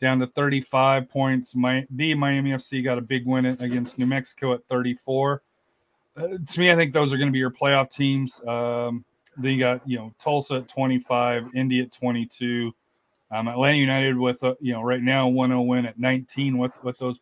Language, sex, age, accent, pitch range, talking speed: English, male, 30-49, American, 120-135 Hz, 200 wpm